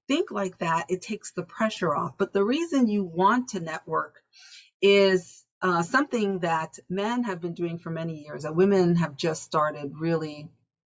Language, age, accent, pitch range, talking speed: English, 40-59, American, 165-200 Hz, 175 wpm